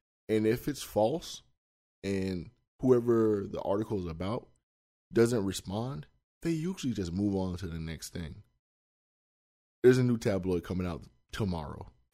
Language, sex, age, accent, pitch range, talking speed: English, male, 20-39, American, 85-120 Hz, 140 wpm